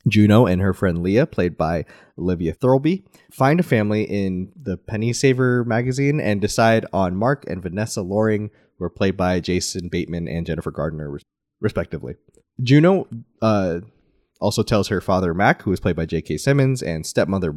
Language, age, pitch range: English, 20-39, 95-120 Hz